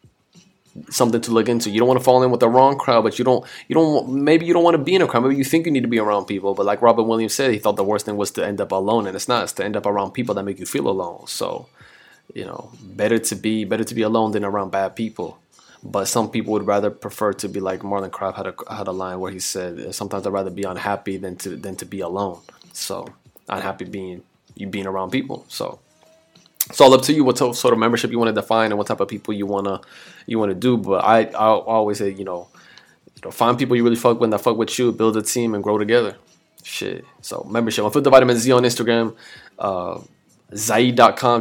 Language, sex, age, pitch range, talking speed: English, male, 20-39, 100-120 Hz, 260 wpm